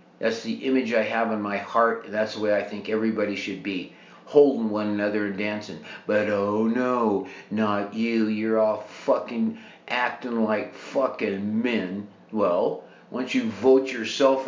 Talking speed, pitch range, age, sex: 160 wpm, 100-140 Hz, 50-69, male